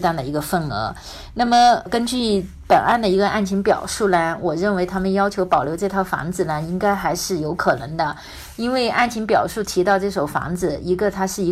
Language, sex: Chinese, female